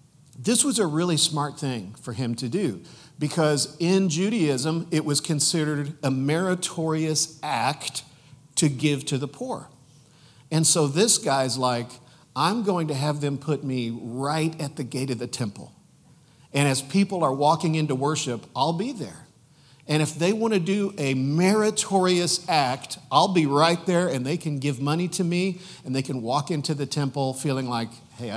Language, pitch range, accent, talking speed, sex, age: English, 130-165 Hz, American, 175 wpm, male, 50-69